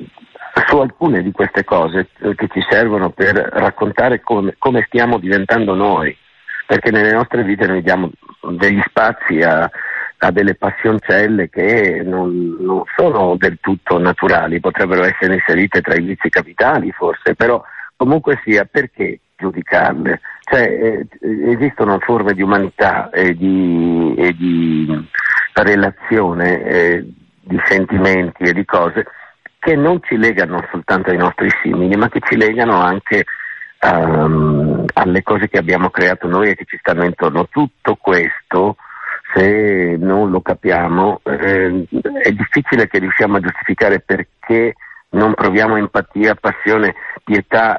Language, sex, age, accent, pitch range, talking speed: Italian, male, 50-69, native, 90-105 Hz, 135 wpm